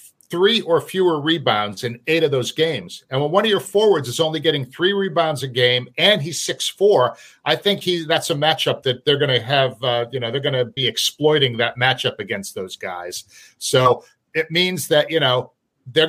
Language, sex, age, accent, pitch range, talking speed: English, male, 50-69, American, 125-165 Hz, 215 wpm